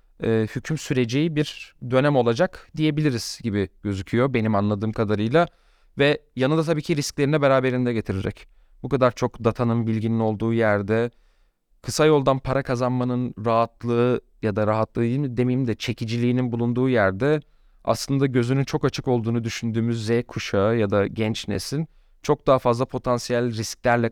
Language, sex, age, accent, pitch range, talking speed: Turkish, male, 30-49, native, 110-130 Hz, 140 wpm